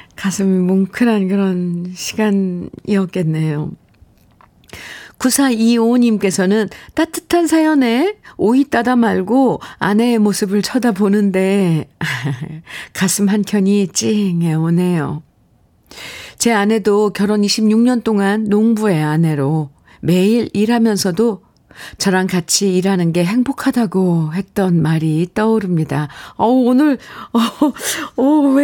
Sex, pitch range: female, 185-250 Hz